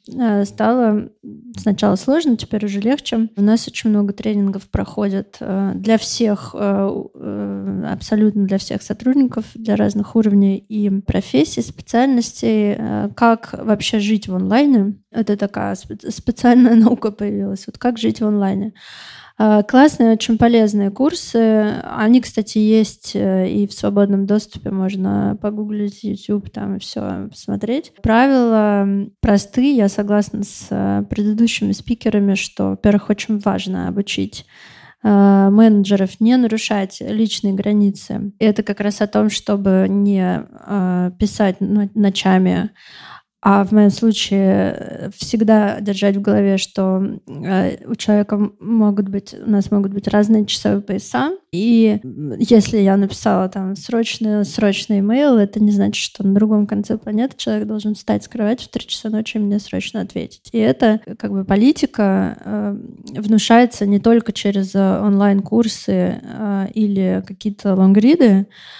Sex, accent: female, native